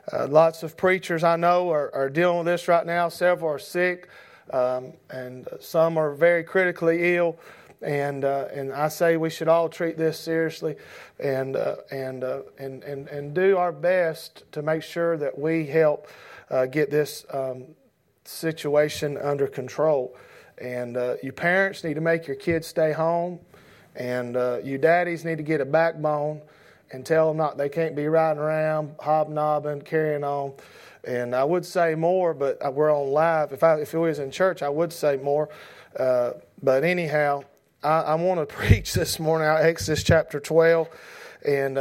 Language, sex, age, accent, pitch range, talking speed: English, male, 40-59, American, 145-175 Hz, 180 wpm